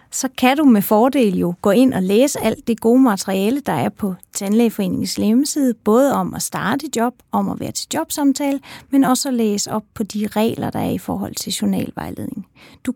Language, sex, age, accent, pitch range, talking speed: Danish, female, 30-49, native, 205-260 Hz, 210 wpm